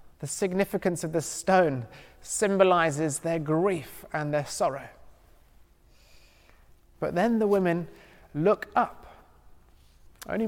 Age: 20-39